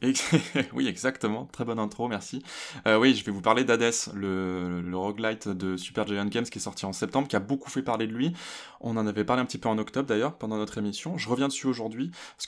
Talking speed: 240 wpm